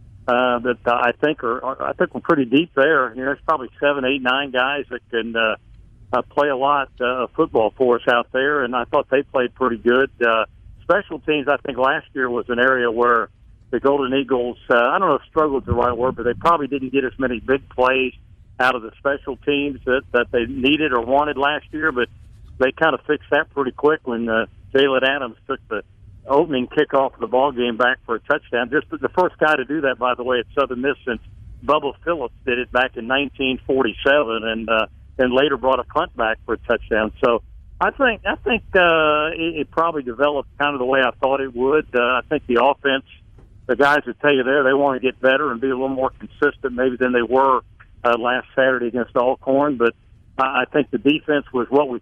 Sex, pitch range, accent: male, 120-140 Hz, American